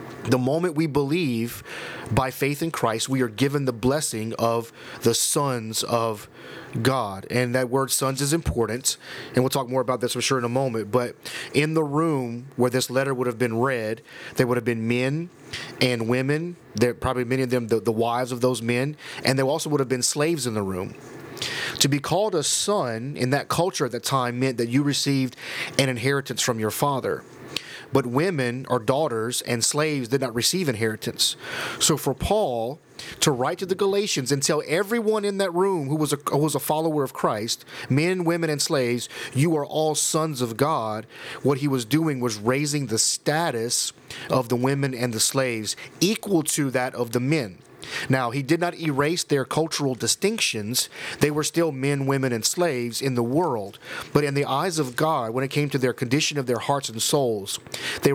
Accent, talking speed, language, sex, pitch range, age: American, 195 wpm, English, male, 120-150 Hz, 30-49